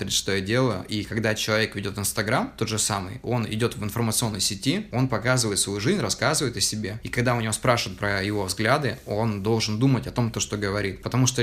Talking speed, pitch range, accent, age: 215 wpm, 105-120 Hz, native, 20-39